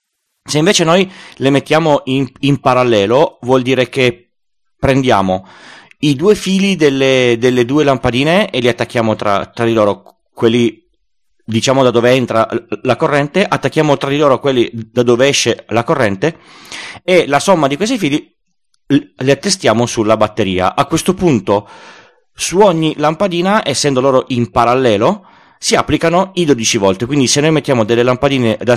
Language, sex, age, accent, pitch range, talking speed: Italian, male, 30-49, native, 110-145 Hz, 155 wpm